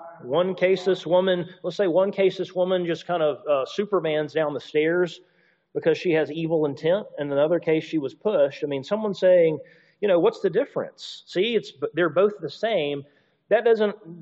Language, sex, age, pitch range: English, male, 40-59, 145-210 Hz